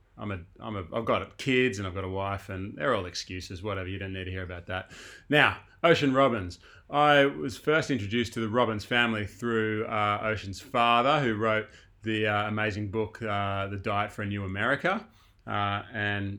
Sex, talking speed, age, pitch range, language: male, 200 wpm, 30-49, 100-120 Hz, English